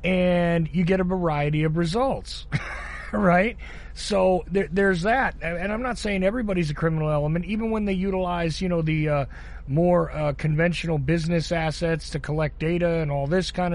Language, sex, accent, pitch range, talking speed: English, male, American, 145-180 Hz, 170 wpm